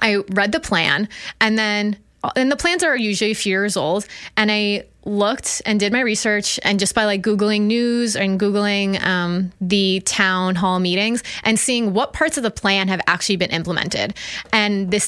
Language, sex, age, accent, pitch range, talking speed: English, female, 20-39, American, 180-215 Hz, 190 wpm